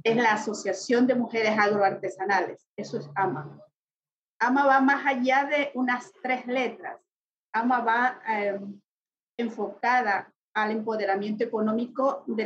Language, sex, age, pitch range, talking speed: Spanish, female, 40-59, 220-290 Hz, 120 wpm